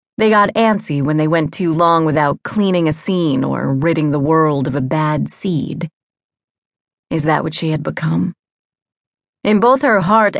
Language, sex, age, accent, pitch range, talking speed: English, female, 30-49, American, 150-185 Hz, 175 wpm